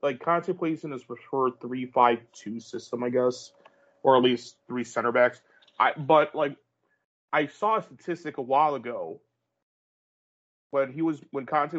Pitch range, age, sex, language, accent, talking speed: 120-145 Hz, 30-49, male, English, American, 160 wpm